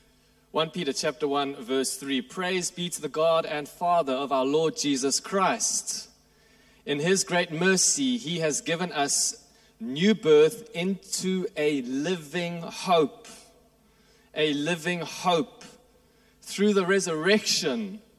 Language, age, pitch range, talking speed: English, 30-49, 155-225 Hz, 125 wpm